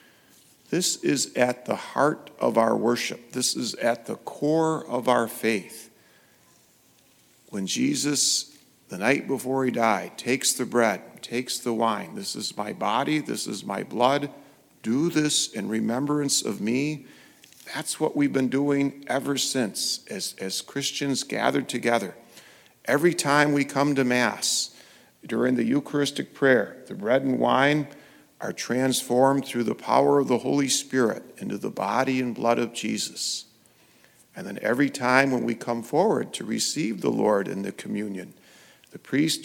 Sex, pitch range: male, 120-145 Hz